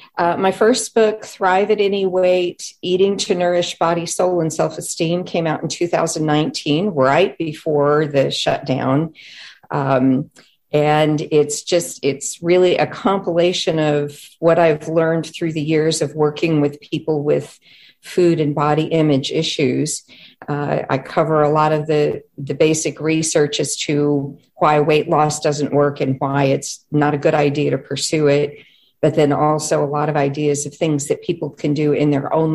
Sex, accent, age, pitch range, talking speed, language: female, American, 50-69, 140-160 Hz, 170 wpm, English